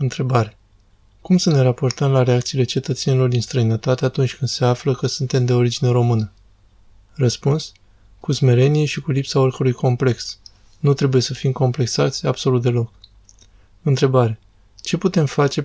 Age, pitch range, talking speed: 20-39, 105-135 Hz, 145 wpm